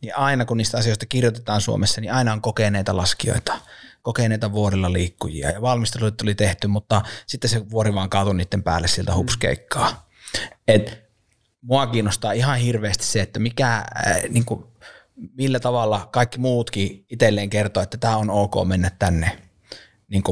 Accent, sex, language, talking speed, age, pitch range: native, male, Finnish, 150 wpm, 30-49, 100-115 Hz